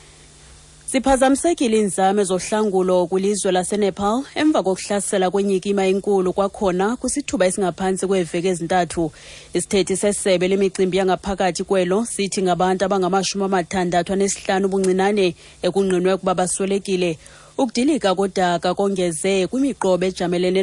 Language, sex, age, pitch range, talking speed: English, female, 30-49, 135-190 Hz, 105 wpm